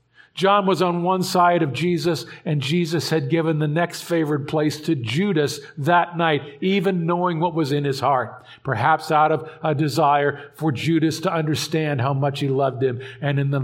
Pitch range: 125-165 Hz